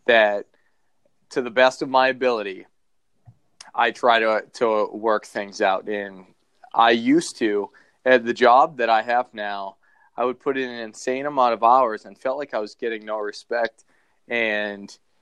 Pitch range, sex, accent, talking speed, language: 115-155 Hz, male, American, 170 wpm, English